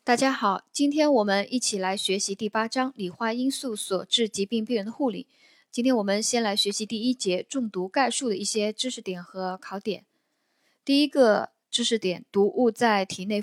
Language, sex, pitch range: Chinese, female, 195-250 Hz